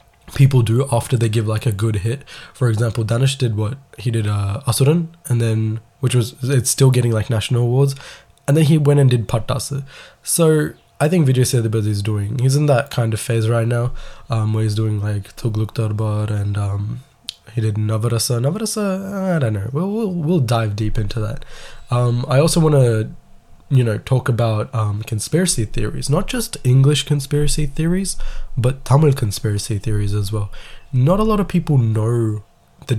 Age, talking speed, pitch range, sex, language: 20-39, 195 wpm, 110-140 Hz, male, Tamil